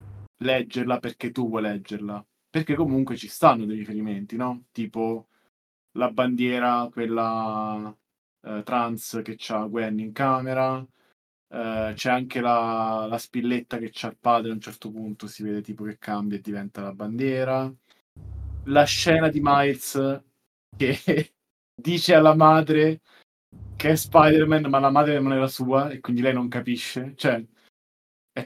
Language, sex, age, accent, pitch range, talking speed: Italian, male, 20-39, native, 110-130 Hz, 145 wpm